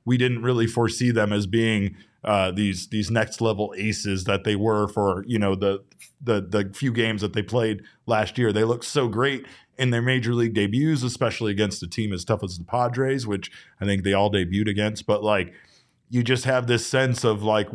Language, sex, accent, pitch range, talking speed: English, male, American, 105-125 Hz, 215 wpm